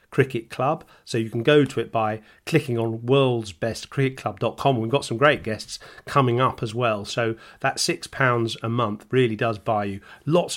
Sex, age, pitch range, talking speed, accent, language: male, 40-59, 110-130 Hz, 180 wpm, British, English